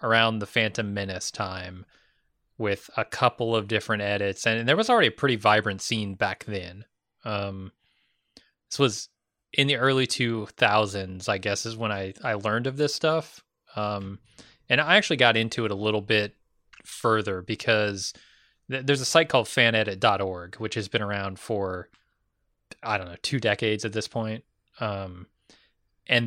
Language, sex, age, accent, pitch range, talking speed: English, male, 20-39, American, 105-125 Hz, 160 wpm